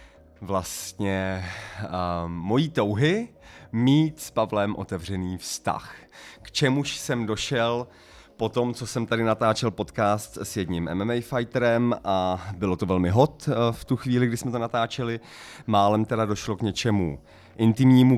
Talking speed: 135 wpm